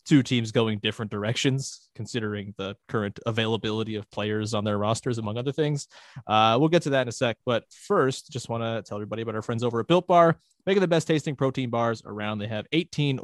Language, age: English, 20-39